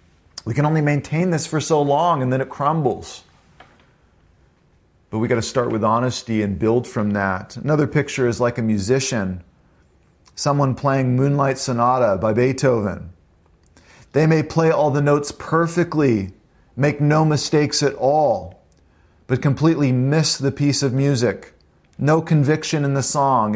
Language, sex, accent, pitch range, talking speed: English, male, American, 110-145 Hz, 150 wpm